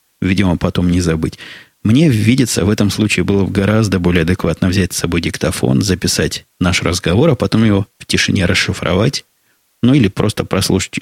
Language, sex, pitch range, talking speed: Russian, male, 90-110 Hz, 165 wpm